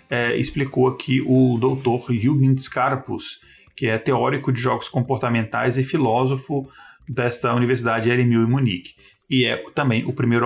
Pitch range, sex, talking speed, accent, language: 120-140 Hz, male, 145 wpm, Brazilian, Portuguese